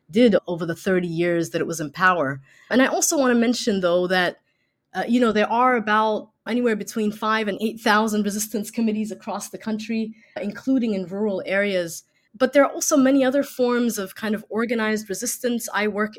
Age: 20-39